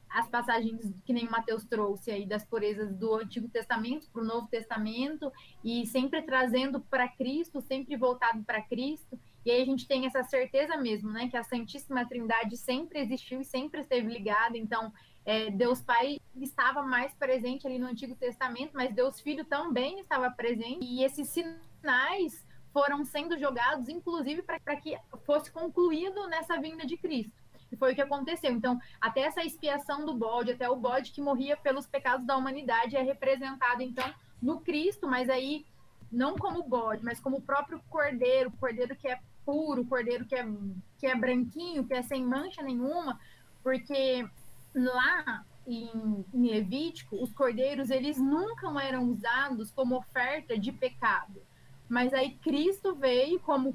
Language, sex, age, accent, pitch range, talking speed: Portuguese, female, 20-39, Brazilian, 245-285 Hz, 165 wpm